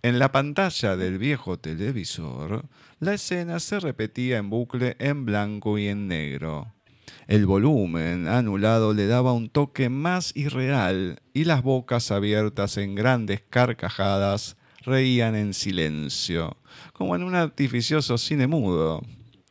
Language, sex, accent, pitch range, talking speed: Spanish, male, Argentinian, 100-135 Hz, 130 wpm